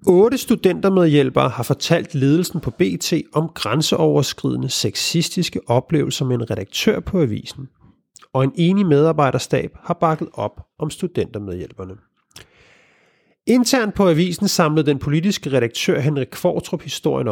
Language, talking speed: Danish, 120 wpm